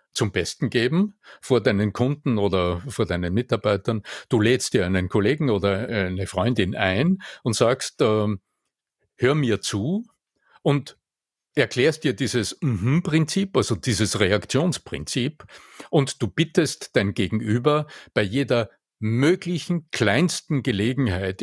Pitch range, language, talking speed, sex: 105-145 Hz, German, 120 wpm, male